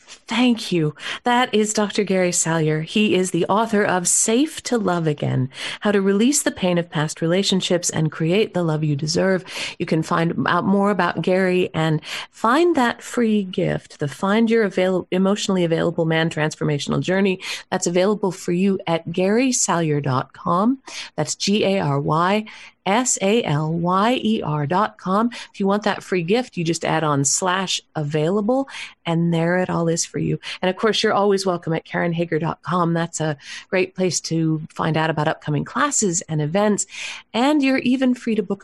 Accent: American